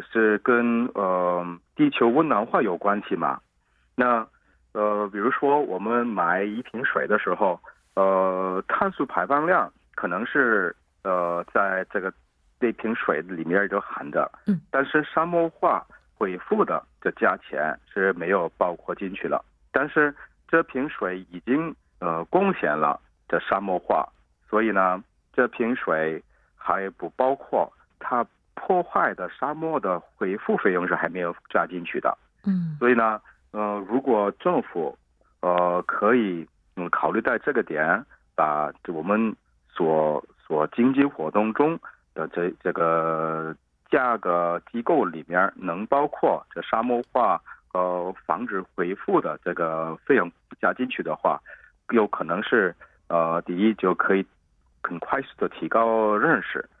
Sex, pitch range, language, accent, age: male, 85-120 Hz, Korean, Chinese, 50-69